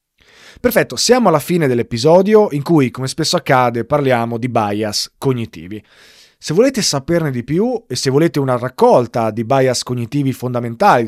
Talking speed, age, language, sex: 150 wpm, 30-49, Italian, male